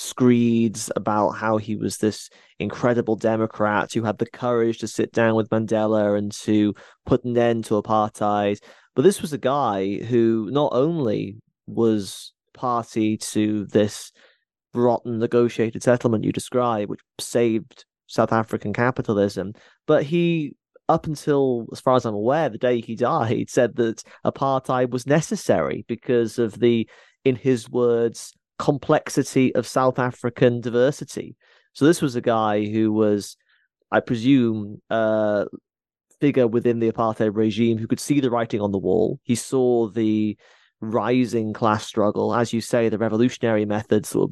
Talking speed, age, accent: 150 wpm, 20-39, British